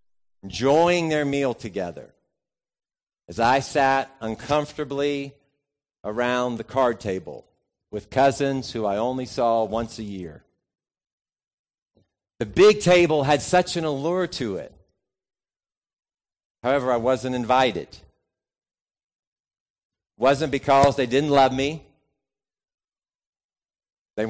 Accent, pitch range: American, 110-150 Hz